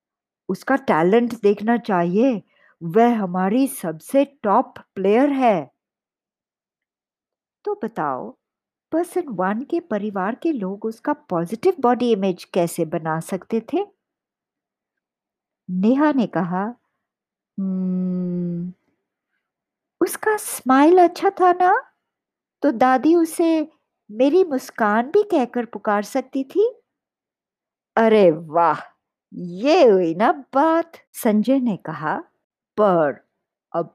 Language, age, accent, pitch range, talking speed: Hindi, 50-69, native, 180-295 Hz, 100 wpm